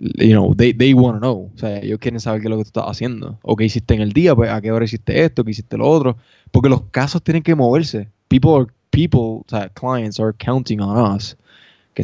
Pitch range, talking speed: 110-130 Hz, 260 wpm